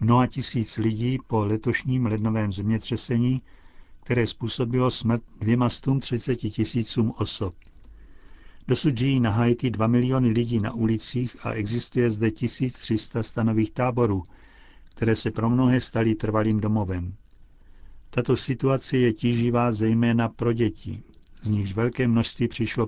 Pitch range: 105-120 Hz